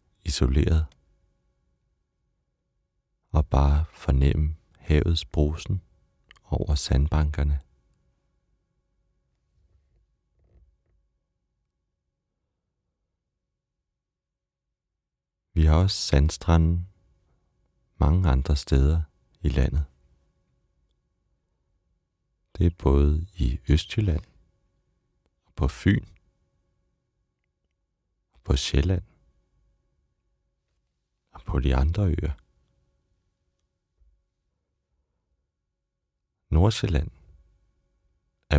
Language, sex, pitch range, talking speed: Danish, male, 70-85 Hz, 55 wpm